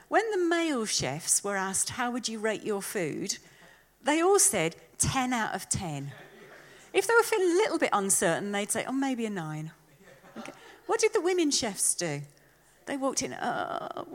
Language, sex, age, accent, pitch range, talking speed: English, female, 40-59, British, 185-285 Hz, 180 wpm